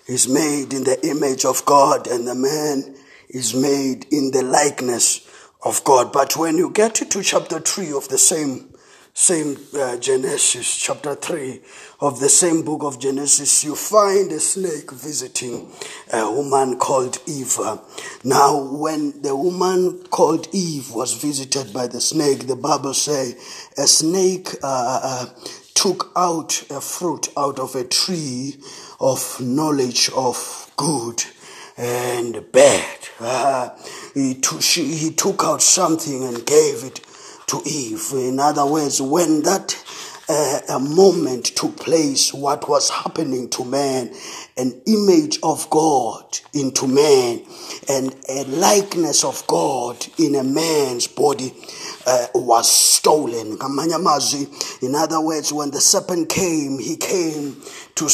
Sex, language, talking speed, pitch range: male, English, 140 wpm, 135-185 Hz